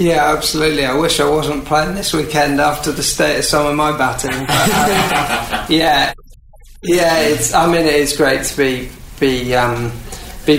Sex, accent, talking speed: male, British, 165 wpm